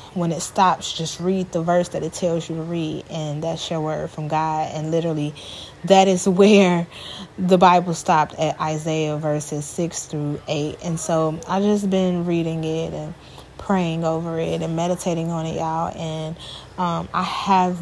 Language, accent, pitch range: English, American, 160-185 Hz